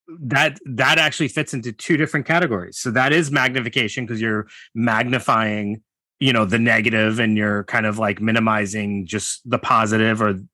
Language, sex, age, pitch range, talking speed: English, male, 30-49, 105-130 Hz, 165 wpm